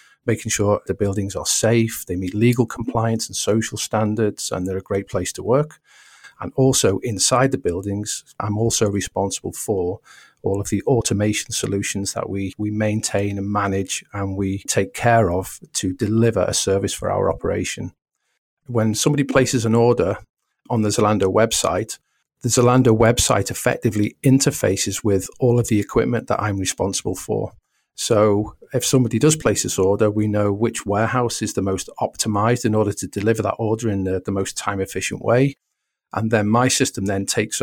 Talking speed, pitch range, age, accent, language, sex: 175 wpm, 100-115 Hz, 40-59, British, English, male